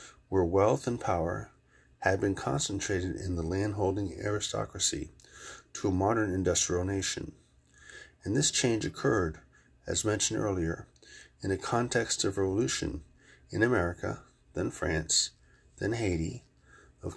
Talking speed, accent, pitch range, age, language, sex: 120 wpm, American, 90-105 Hz, 40-59, English, male